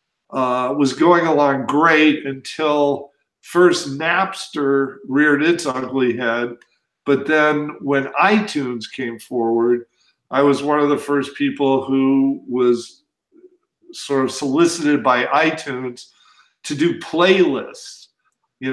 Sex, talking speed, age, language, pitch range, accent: male, 115 wpm, 50-69, English, 130-170 Hz, American